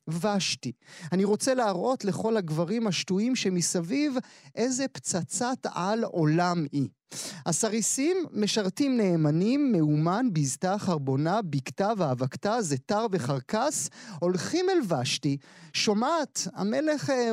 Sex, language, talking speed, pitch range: male, Hebrew, 95 wpm, 165-220 Hz